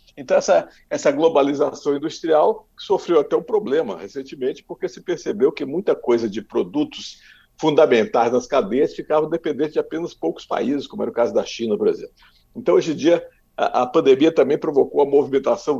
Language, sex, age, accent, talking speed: Portuguese, male, 60-79, Brazilian, 175 wpm